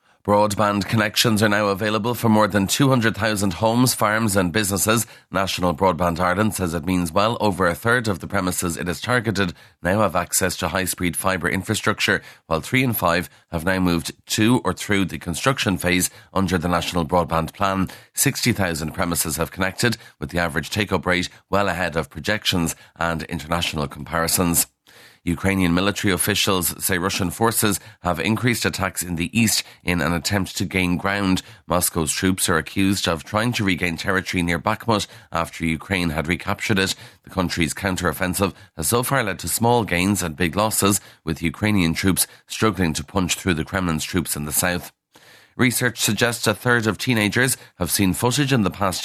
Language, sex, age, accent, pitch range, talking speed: English, male, 30-49, Irish, 85-105 Hz, 175 wpm